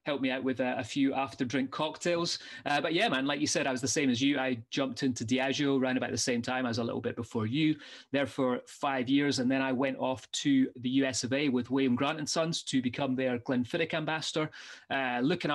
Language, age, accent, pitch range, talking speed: English, 30-49, British, 130-155 Hz, 245 wpm